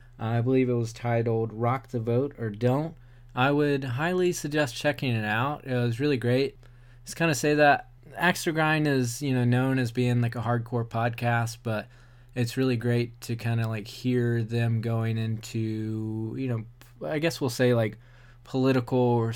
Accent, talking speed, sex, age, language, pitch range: American, 185 wpm, male, 20-39, English, 110-125 Hz